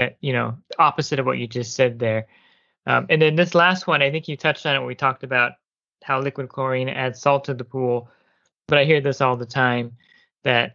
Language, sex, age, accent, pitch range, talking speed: English, male, 20-39, American, 125-145 Hz, 230 wpm